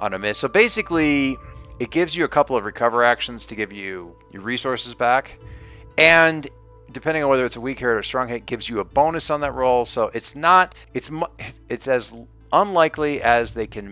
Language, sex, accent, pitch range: English, male, American, 100-130 Hz